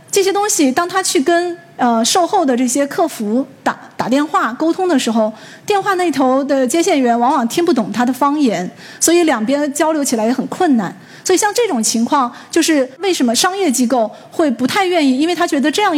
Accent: native